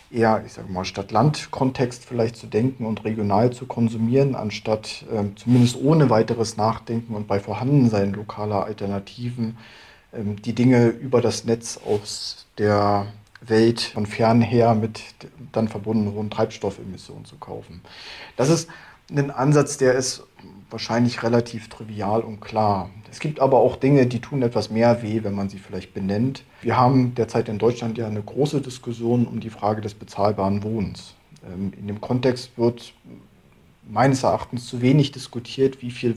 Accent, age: German, 40-59